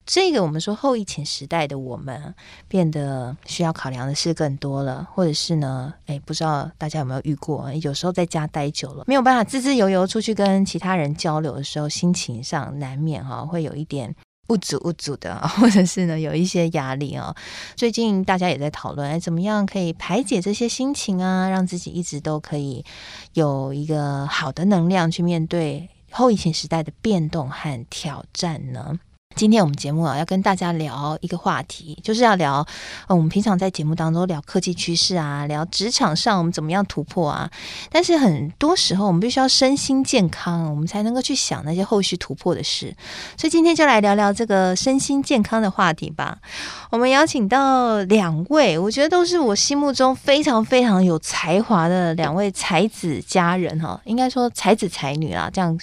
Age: 20-39